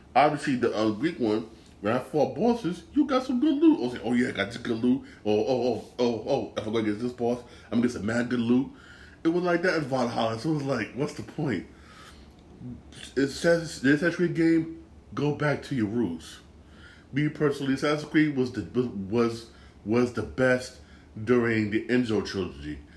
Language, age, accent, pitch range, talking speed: English, 20-39, American, 105-130 Hz, 210 wpm